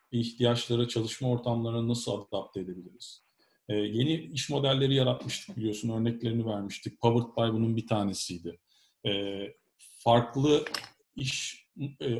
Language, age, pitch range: Turkish, 40-59, 110-135 Hz